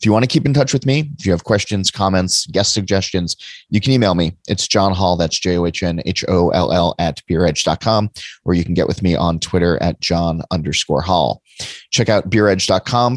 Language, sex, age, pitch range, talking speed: English, male, 30-49, 90-110 Hz, 190 wpm